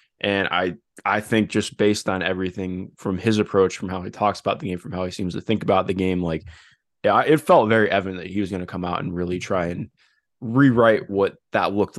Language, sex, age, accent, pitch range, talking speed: English, male, 20-39, American, 90-110 Hz, 235 wpm